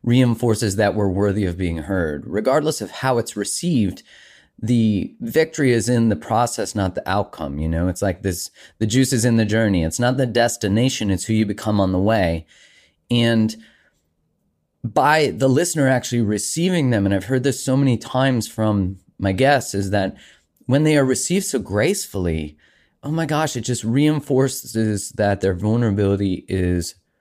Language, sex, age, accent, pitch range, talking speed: English, male, 30-49, American, 90-115 Hz, 170 wpm